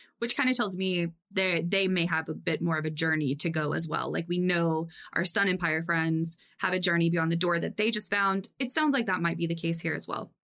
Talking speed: 270 wpm